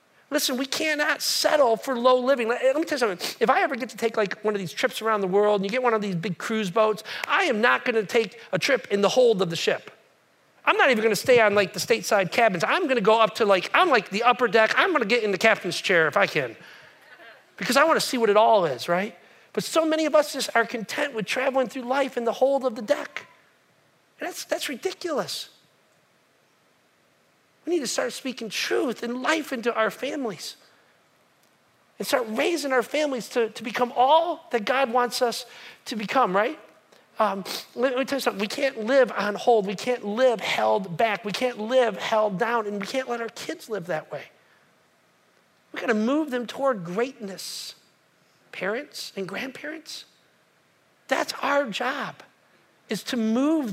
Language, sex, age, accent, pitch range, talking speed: English, male, 40-59, American, 210-260 Hz, 210 wpm